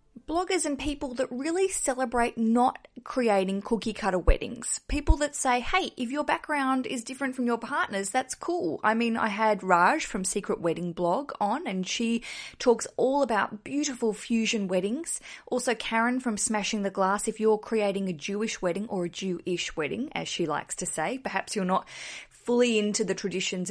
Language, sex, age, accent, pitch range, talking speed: English, female, 20-39, Australian, 185-245 Hz, 175 wpm